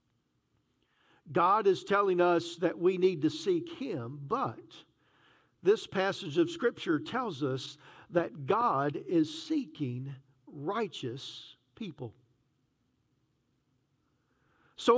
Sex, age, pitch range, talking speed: male, 50-69, 200-270 Hz, 95 wpm